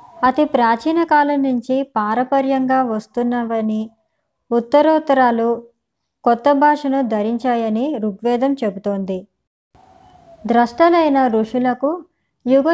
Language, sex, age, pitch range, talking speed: Telugu, male, 20-39, 225-275 Hz, 70 wpm